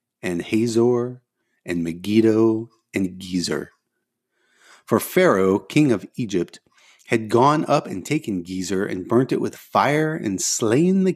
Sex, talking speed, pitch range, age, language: male, 135 wpm, 95-150 Hz, 30-49, English